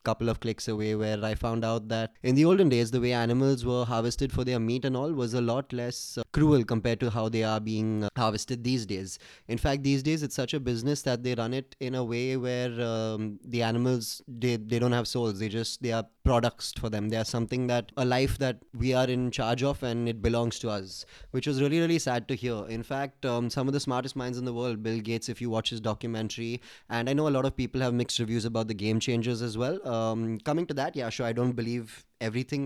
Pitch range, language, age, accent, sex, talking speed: 115-130 Hz, English, 20-39, Indian, male, 250 wpm